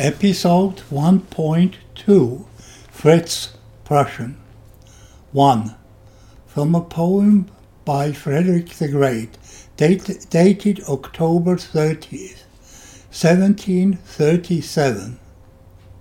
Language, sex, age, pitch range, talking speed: English, male, 60-79, 125-180 Hz, 60 wpm